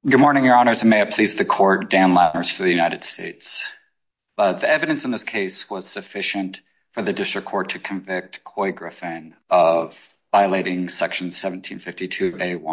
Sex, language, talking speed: male, English, 170 wpm